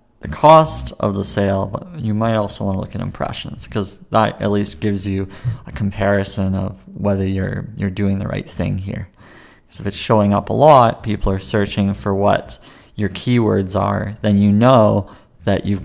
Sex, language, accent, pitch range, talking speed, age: male, English, American, 100-115 Hz, 195 wpm, 30-49